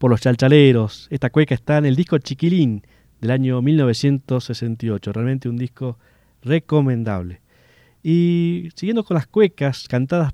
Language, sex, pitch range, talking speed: Spanish, male, 115-155 Hz, 135 wpm